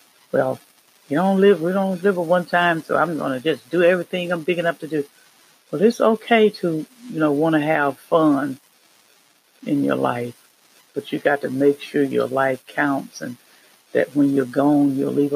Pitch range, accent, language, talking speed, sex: 145-180 Hz, American, English, 190 wpm, female